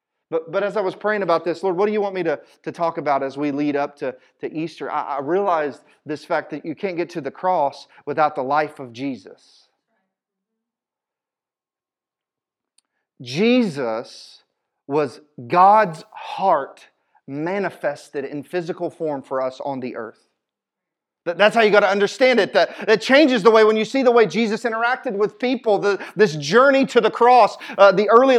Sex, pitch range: male, 185-240 Hz